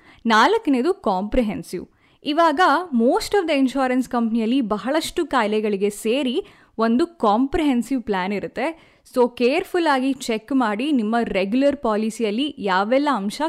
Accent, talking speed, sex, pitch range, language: native, 105 wpm, female, 220-295 Hz, Kannada